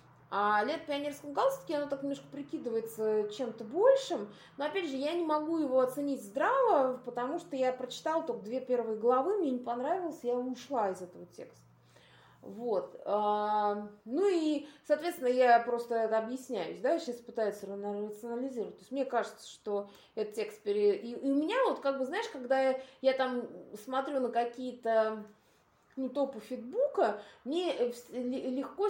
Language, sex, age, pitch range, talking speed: Russian, female, 20-39, 220-285 Hz, 155 wpm